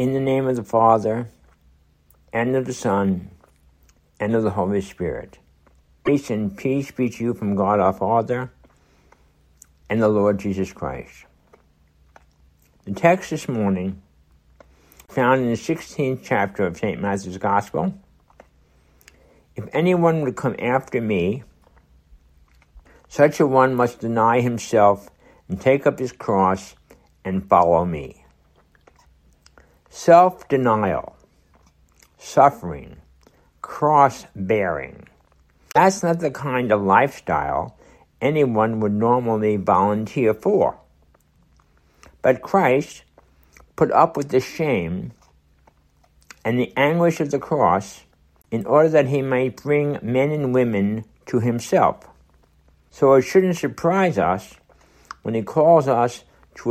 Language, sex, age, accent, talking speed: English, male, 60-79, American, 115 wpm